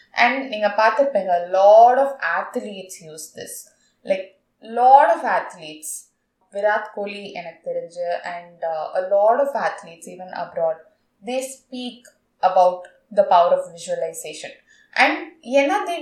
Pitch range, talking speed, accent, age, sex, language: 200-275 Hz, 125 wpm, native, 20-39, female, Tamil